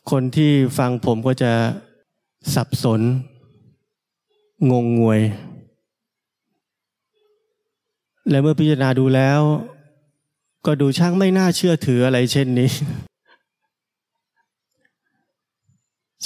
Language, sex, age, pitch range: Thai, male, 20-39, 120-150 Hz